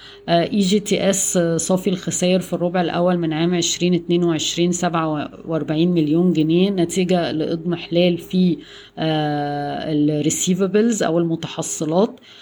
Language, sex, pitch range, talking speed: Arabic, female, 165-185 Hz, 110 wpm